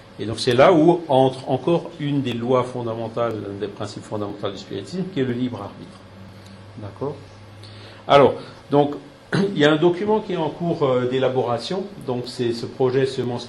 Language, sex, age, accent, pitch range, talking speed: French, male, 50-69, French, 115-135 Hz, 180 wpm